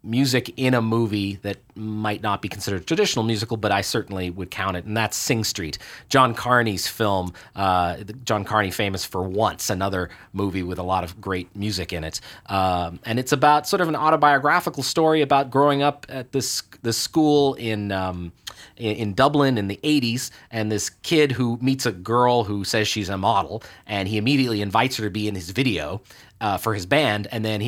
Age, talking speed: 30-49, 200 wpm